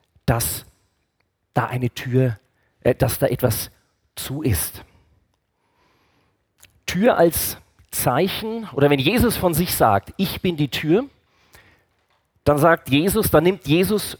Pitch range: 100-150 Hz